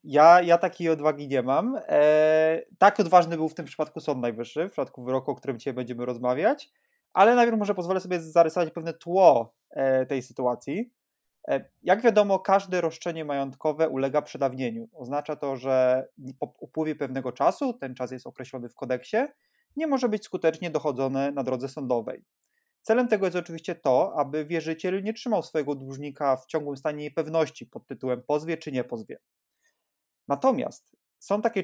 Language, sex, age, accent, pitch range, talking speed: Polish, male, 20-39, native, 140-190 Hz, 165 wpm